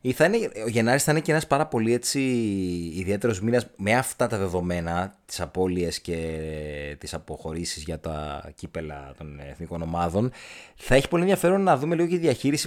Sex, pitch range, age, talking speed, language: male, 95-140 Hz, 30-49, 175 wpm, Greek